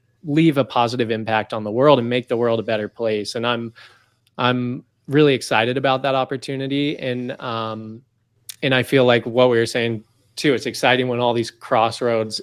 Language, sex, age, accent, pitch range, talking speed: English, male, 20-39, American, 110-130 Hz, 190 wpm